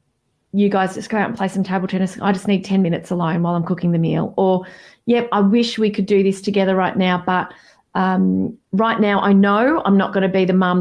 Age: 30-49